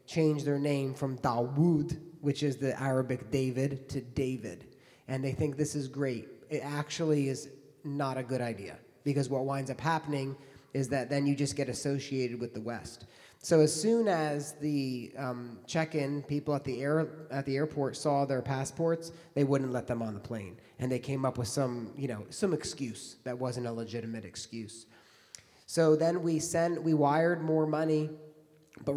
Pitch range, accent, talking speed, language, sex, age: 130-155 Hz, American, 180 wpm, English, male, 30-49